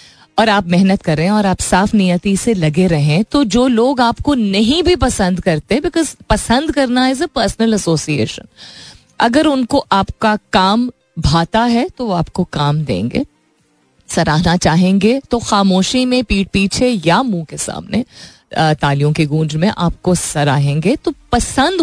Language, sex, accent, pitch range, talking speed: Hindi, female, native, 170-235 Hz, 160 wpm